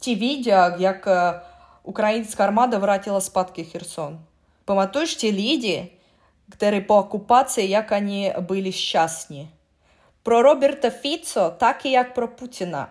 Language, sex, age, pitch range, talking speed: Czech, female, 20-39, 185-245 Hz, 125 wpm